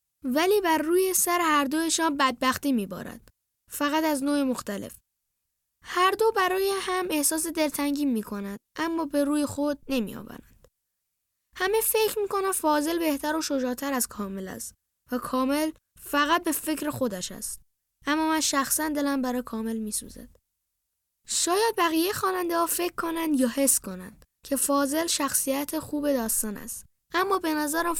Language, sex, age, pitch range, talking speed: Persian, female, 10-29, 255-335 Hz, 150 wpm